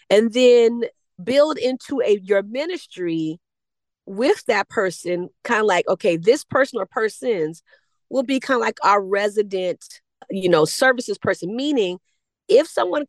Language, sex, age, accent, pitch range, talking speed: English, female, 30-49, American, 180-250 Hz, 145 wpm